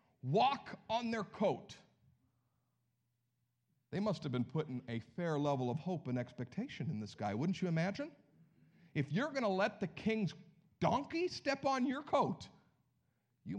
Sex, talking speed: male, 155 wpm